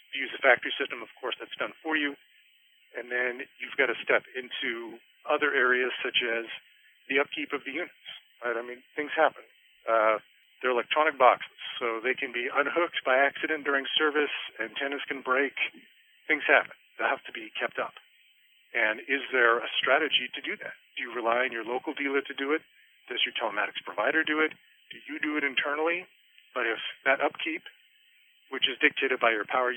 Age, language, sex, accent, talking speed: 40-59, English, male, American, 190 wpm